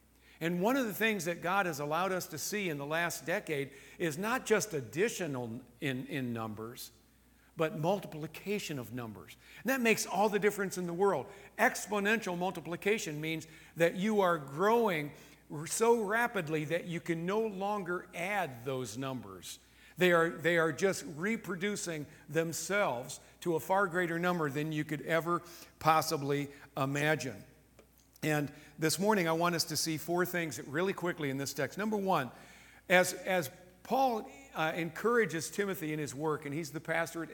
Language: English